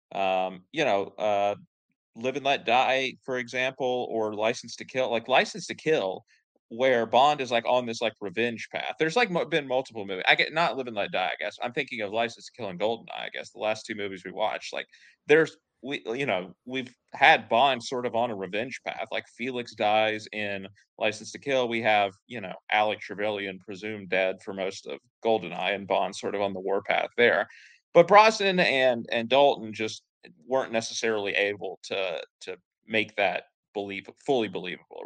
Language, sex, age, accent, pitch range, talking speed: English, male, 30-49, American, 100-130 Hz, 200 wpm